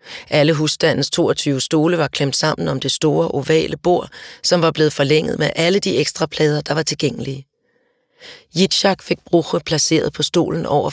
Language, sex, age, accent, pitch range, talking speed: Danish, female, 40-59, native, 145-170 Hz, 170 wpm